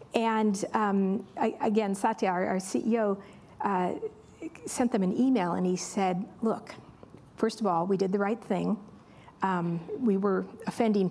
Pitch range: 200-250 Hz